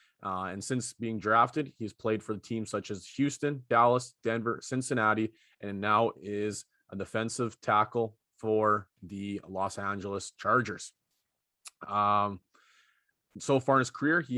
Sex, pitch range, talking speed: male, 105-130 Hz, 140 wpm